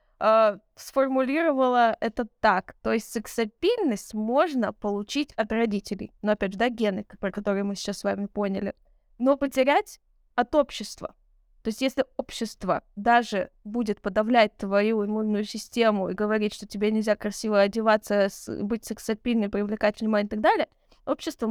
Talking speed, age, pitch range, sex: 140 wpm, 20-39, 210-255 Hz, female